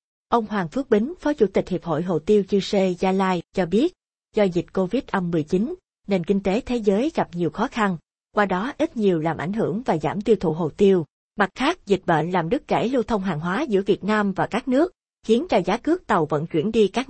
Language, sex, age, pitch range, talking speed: Vietnamese, female, 20-39, 180-230 Hz, 235 wpm